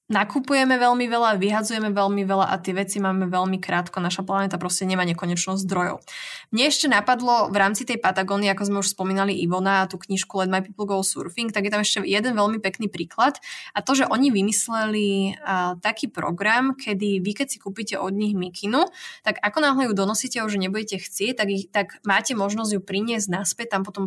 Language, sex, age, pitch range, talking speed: Slovak, female, 20-39, 190-215 Hz, 200 wpm